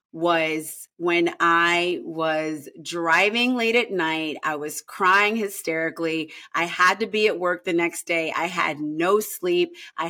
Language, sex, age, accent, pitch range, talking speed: English, female, 30-49, American, 165-235 Hz, 155 wpm